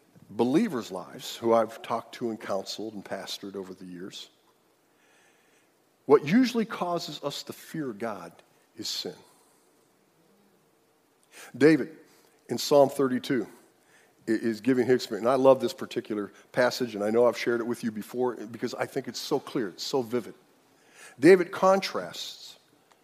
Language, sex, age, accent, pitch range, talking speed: English, male, 50-69, American, 115-145 Hz, 145 wpm